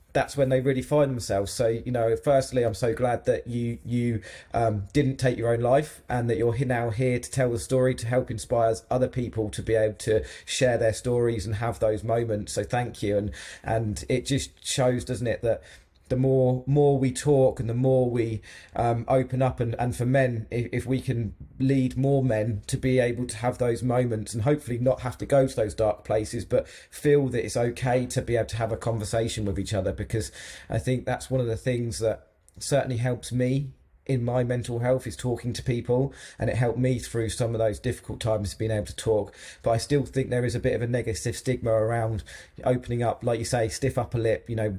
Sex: male